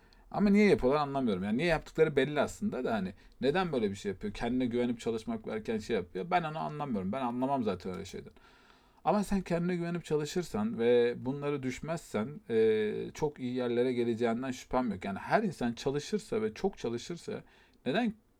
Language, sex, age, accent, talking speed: Turkish, male, 40-59, native, 175 wpm